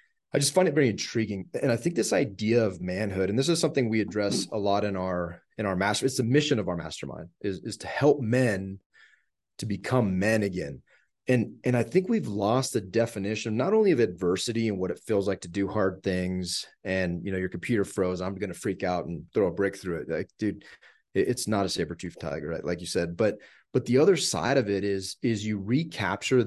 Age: 30-49